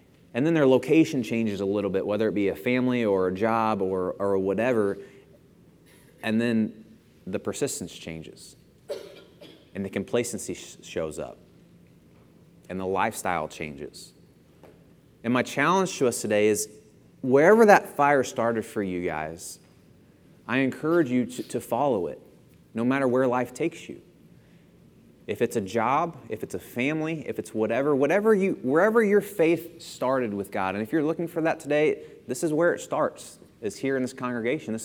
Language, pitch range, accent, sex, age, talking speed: English, 100-140 Hz, American, male, 30-49, 165 wpm